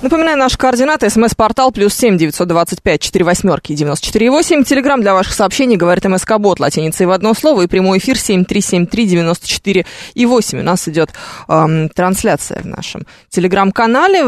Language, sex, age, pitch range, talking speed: Russian, female, 20-39, 175-255 Hz, 145 wpm